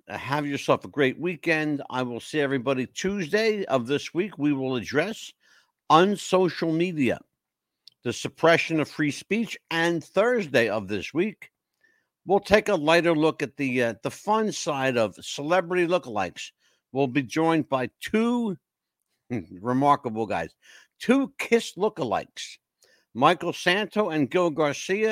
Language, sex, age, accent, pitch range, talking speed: English, male, 60-79, American, 135-190 Hz, 140 wpm